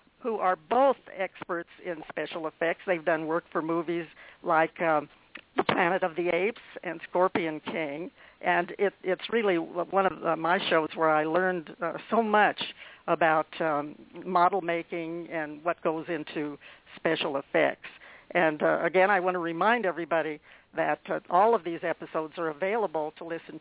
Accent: American